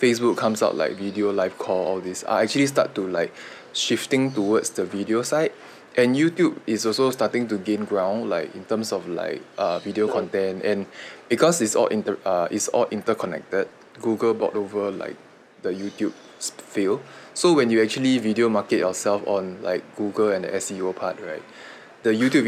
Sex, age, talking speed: male, 20-39, 185 wpm